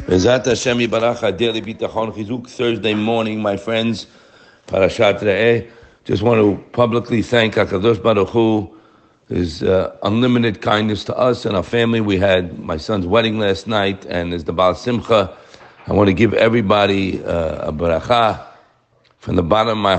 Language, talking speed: English, 145 wpm